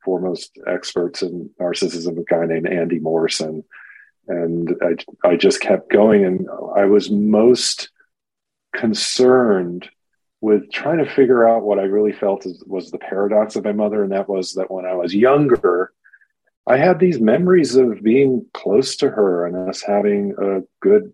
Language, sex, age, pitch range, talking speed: English, male, 40-59, 90-115 Hz, 160 wpm